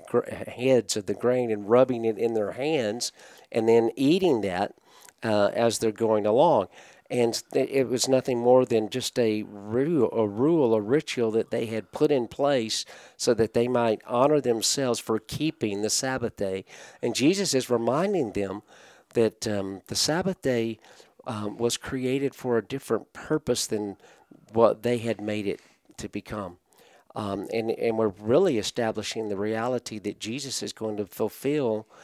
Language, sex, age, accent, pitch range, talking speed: English, male, 50-69, American, 105-120 Hz, 165 wpm